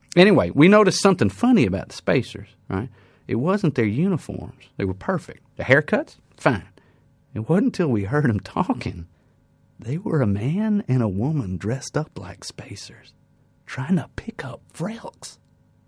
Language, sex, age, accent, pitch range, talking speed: English, male, 40-59, American, 95-160 Hz, 160 wpm